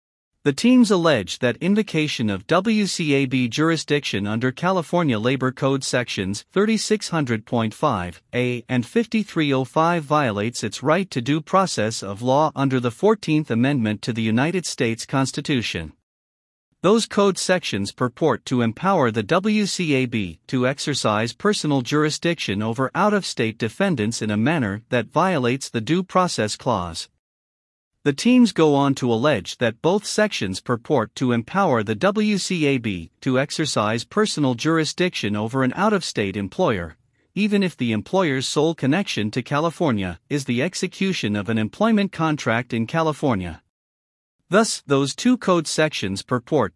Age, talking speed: 50-69, 135 wpm